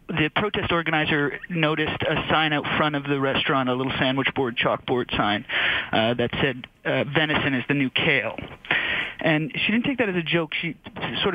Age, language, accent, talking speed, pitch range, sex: 30-49, English, American, 190 wpm, 130-165 Hz, male